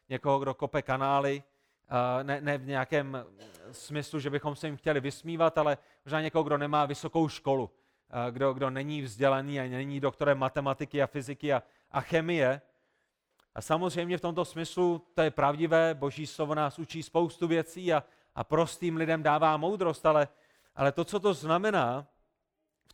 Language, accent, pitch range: Czech, native, 135-170 Hz